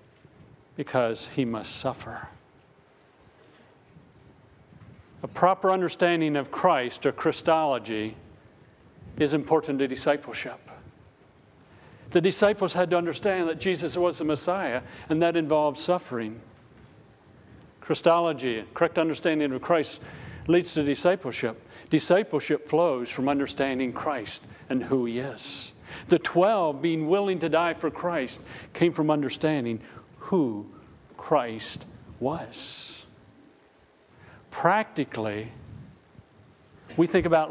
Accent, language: American, English